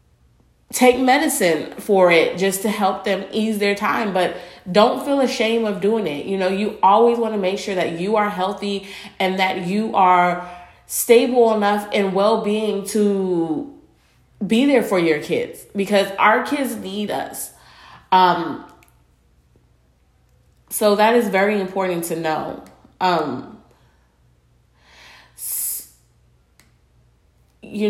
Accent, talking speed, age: American, 130 wpm, 30-49